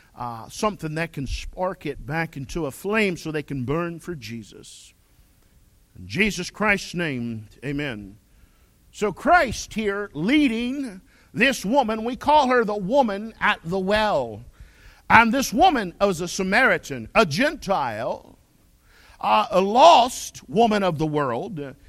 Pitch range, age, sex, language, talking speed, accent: 175-250 Hz, 50-69, male, English, 135 wpm, American